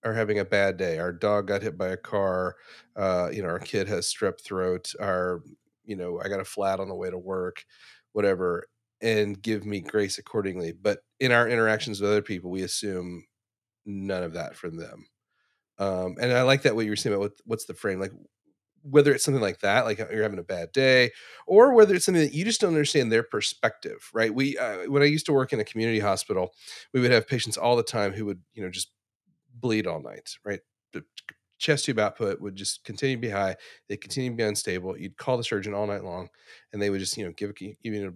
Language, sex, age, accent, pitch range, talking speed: English, male, 30-49, American, 100-140 Hz, 235 wpm